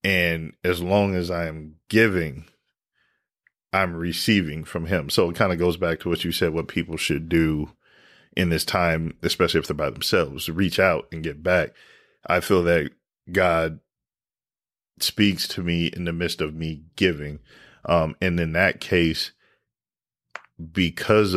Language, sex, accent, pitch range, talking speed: English, male, American, 80-95 Hz, 165 wpm